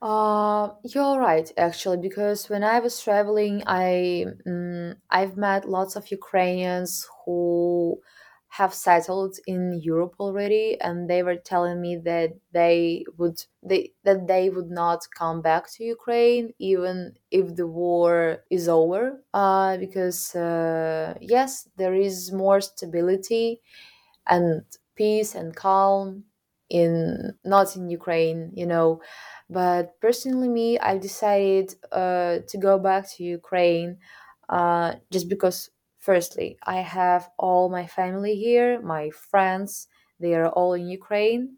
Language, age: English, 20-39